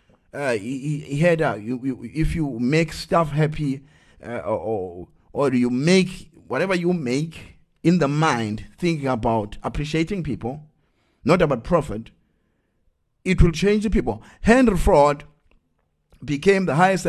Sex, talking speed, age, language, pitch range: male, 140 wpm, 50-69, English, 140-190 Hz